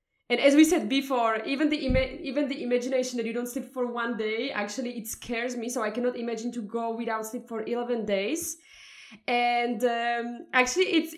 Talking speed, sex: 200 wpm, female